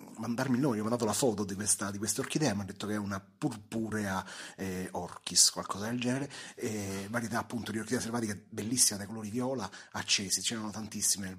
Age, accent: 30-49, native